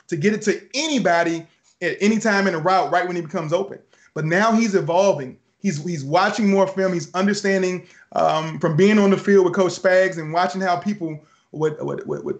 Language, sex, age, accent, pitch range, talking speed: English, male, 20-39, American, 170-205 Hz, 210 wpm